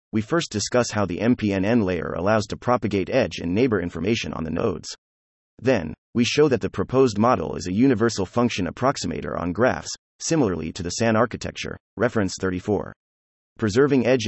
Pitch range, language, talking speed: 90-120 Hz, English, 170 wpm